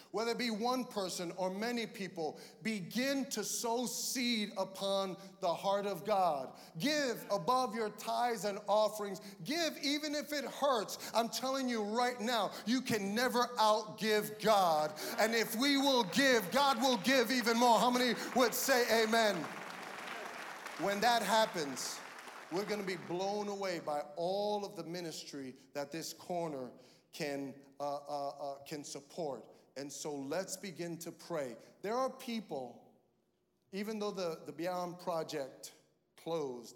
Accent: American